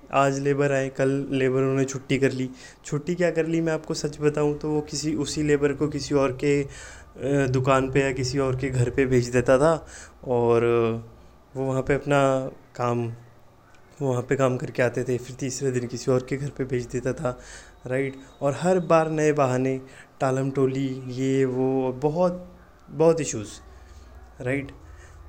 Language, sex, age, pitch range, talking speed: Hindi, male, 20-39, 125-150 Hz, 175 wpm